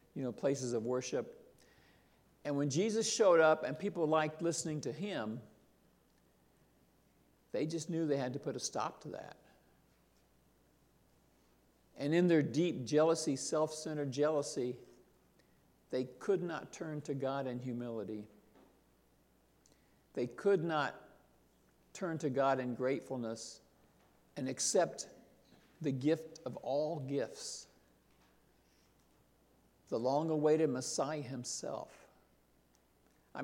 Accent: American